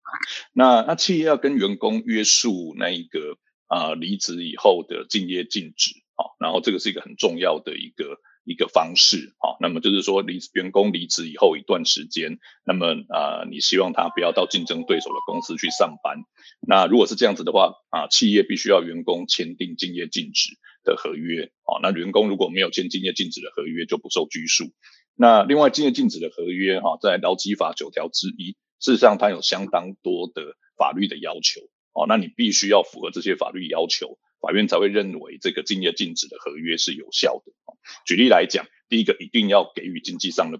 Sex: male